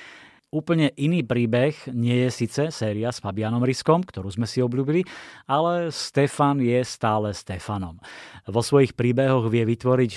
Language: Slovak